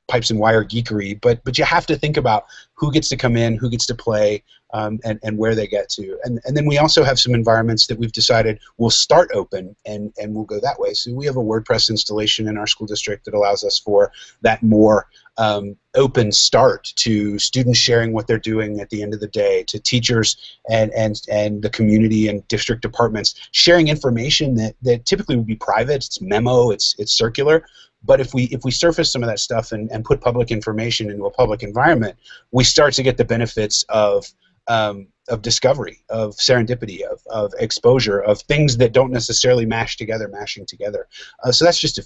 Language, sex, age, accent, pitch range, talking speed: English, male, 30-49, American, 110-130 Hz, 215 wpm